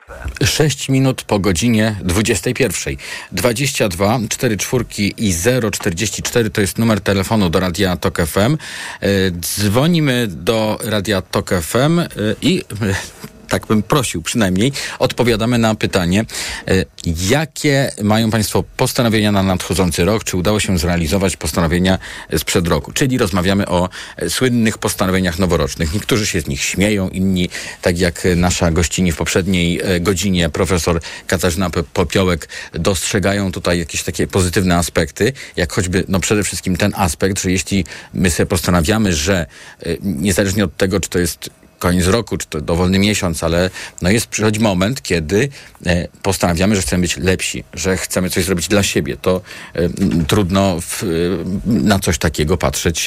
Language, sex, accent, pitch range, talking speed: Polish, male, native, 90-110 Hz, 140 wpm